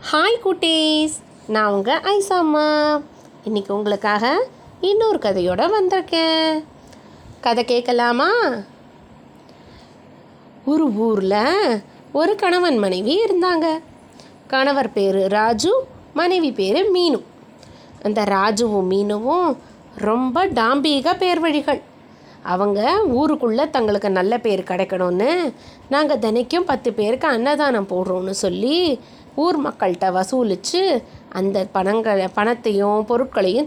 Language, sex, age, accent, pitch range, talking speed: Tamil, female, 20-39, native, 220-335 Hz, 90 wpm